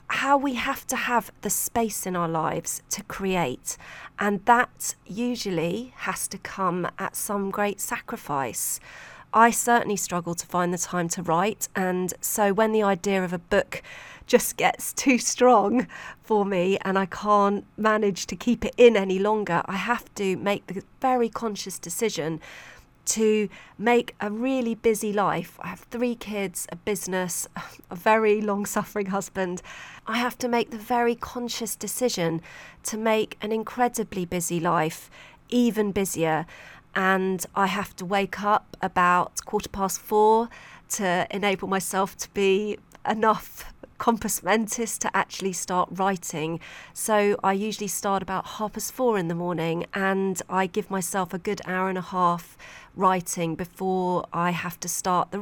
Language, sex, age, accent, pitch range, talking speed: English, female, 40-59, British, 180-220 Hz, 155 wpm